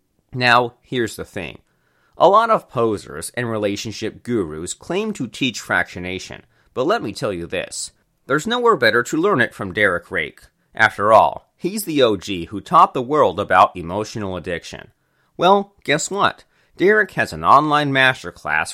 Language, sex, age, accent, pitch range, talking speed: English, male, 30-49, American, 95-140 Hz, 160 wpm